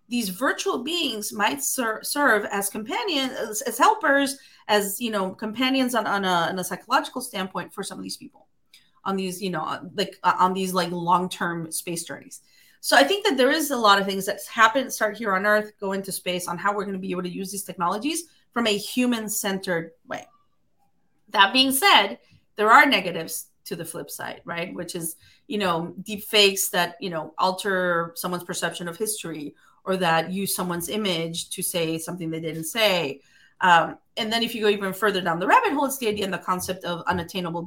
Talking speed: 205 wpm